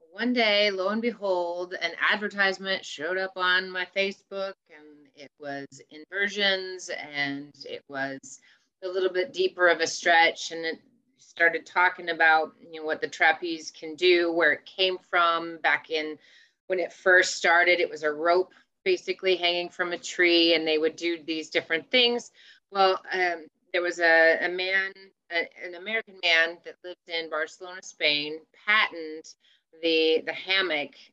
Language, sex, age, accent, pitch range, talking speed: English, female, 30-49, American, 160-190 Hz, 160 wpm